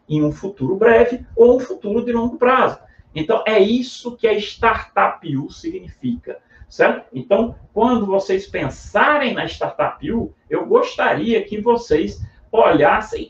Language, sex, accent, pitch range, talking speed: Portuguese, male, Brazilian, 155-245 Hz, 135 wpm